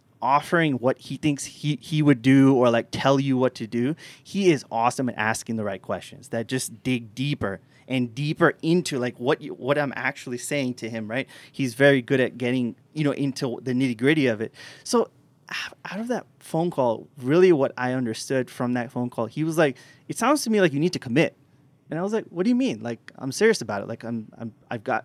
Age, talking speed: 20-39, 230 wpm